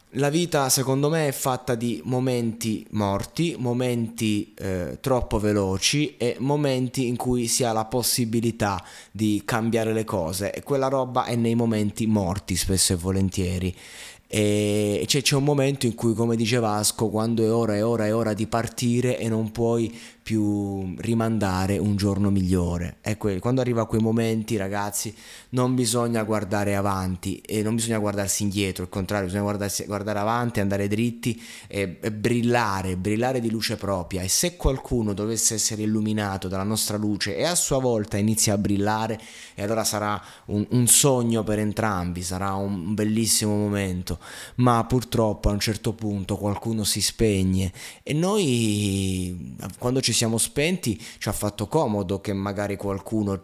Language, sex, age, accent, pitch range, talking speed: Italian, male, 20-39, native, 100-120 Hz, 160 wpm